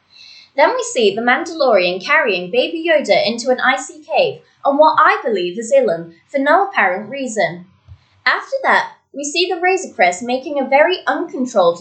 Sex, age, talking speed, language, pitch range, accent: female, 20-39, 165 wpm, English, 220-315 Hz, British